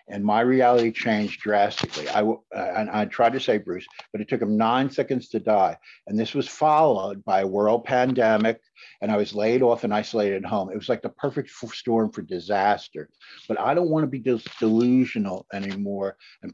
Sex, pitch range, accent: male, 105-125 Hz, American